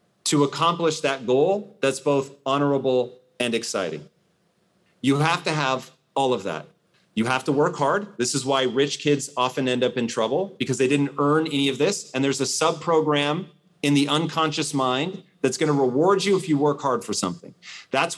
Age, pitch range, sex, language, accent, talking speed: 40-59, 135-170 Hz, male, English, American, 190 wpm